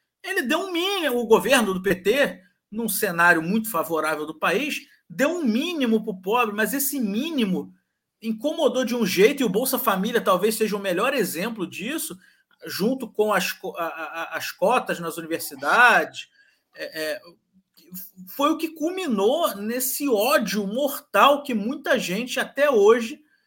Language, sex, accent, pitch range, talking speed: Portuguese, male, Brazilian, 180-275 Hz, 145 wpm